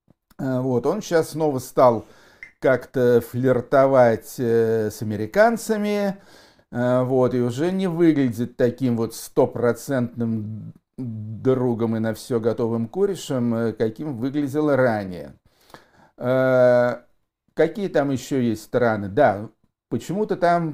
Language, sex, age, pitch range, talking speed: Russian, male, 50-69, 115-135 Hz, 100 wpm